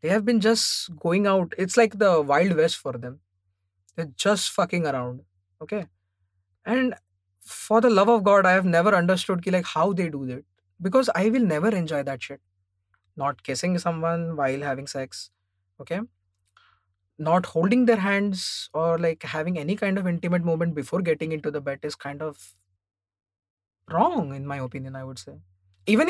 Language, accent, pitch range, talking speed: English, Indian, 125-190 Hz, 175 wpm